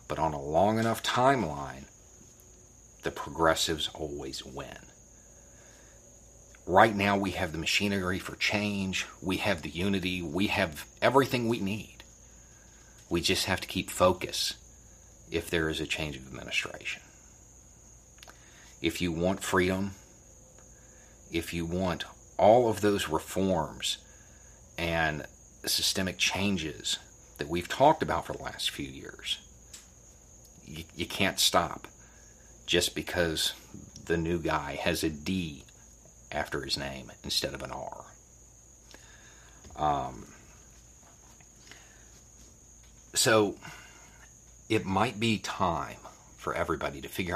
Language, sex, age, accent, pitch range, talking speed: English, male, 40-59, American, 75-100 Hz, 115 wpm